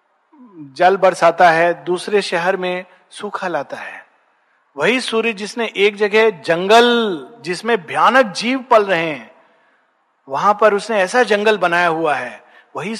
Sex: male